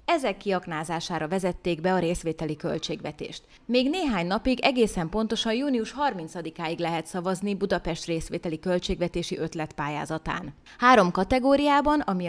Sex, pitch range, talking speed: female, 170-230 Hz, 110 wpm